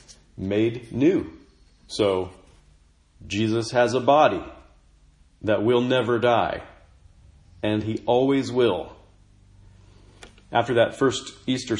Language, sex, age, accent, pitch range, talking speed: English, male, 40-59, American, 90-115 Hz, 95 wpm